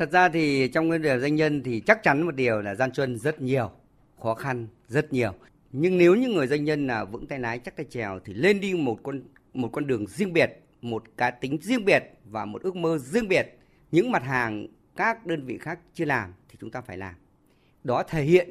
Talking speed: 235 wpm